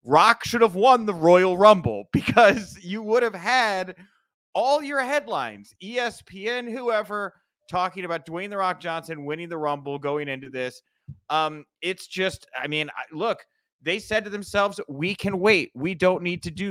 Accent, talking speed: American, 170 wpm